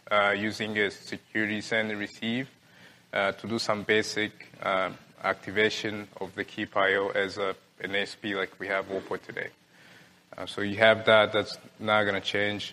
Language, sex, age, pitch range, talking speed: English, male, 20-39, 100-110 Hz, 165 wpm